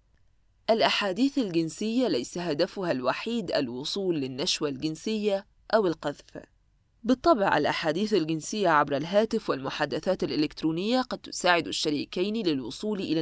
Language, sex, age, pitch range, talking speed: Arabic, female, 20-39, 155-215 Hz, 100 wpm